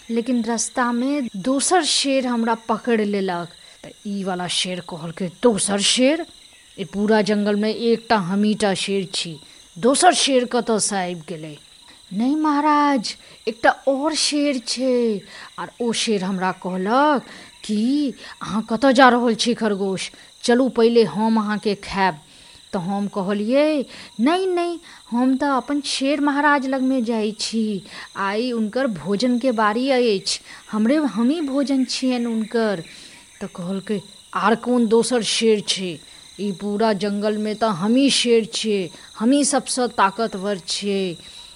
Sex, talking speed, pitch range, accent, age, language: female, 140 wpm, 200-260 Hz, native, 20-39, Hindi